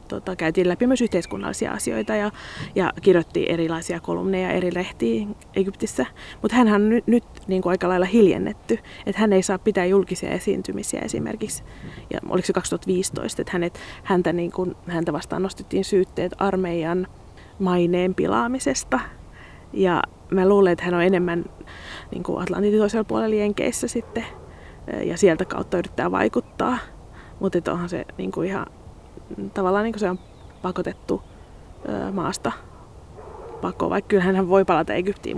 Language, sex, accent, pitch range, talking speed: Finnish, female, native, 175-205 Hz, 135 wpm